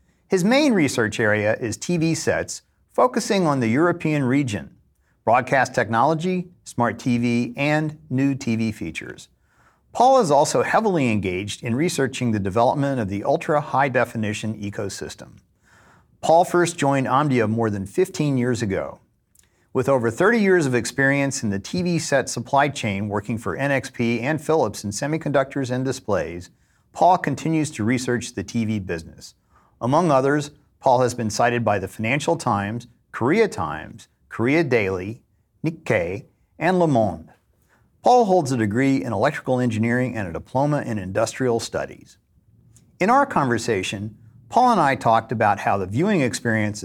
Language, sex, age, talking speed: English, male, 50-69, 145 wpm